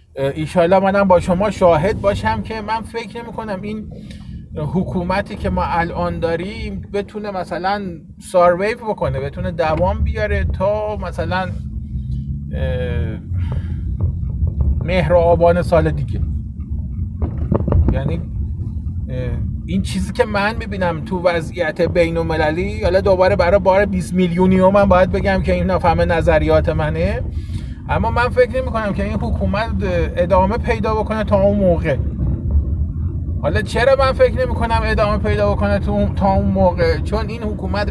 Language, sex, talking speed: Persian, male, 135 wpm